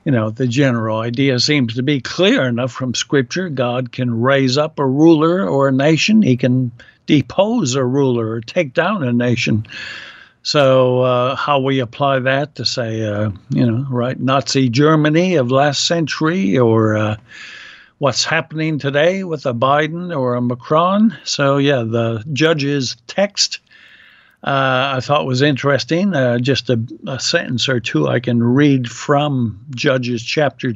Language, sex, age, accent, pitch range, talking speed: English, male, 60-79, American, 125-150 Hz, 160 wpm